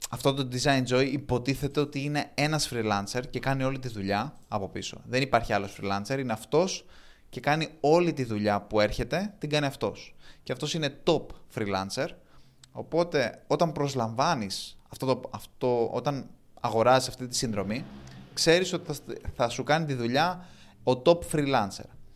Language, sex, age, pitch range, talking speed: Greek, male, 20-39, 105-140 Hz, 155 wpm